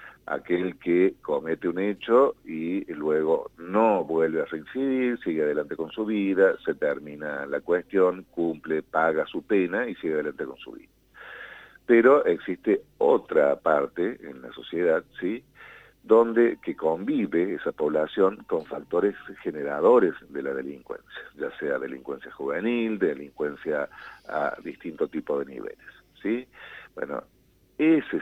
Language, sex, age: Spanish, male, 50-69